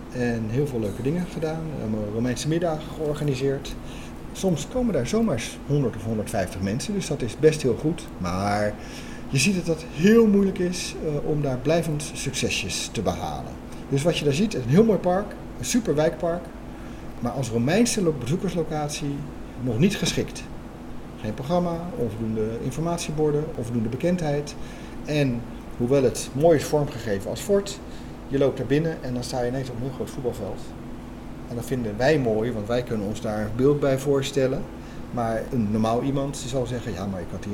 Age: 40-59